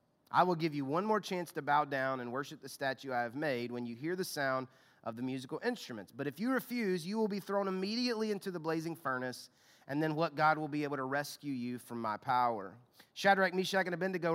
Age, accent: 30-49, American